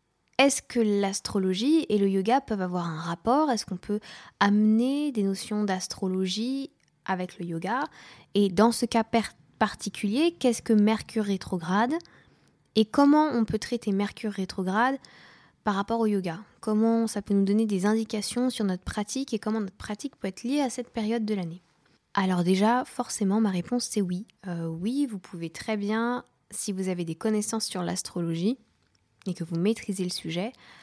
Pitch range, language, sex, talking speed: 190-235 Hz, French, female, 170 wpm